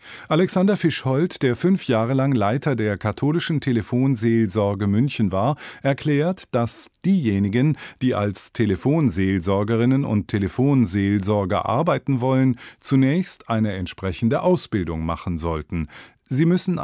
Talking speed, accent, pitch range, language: 105 wpm, German, 105-140 Hz, German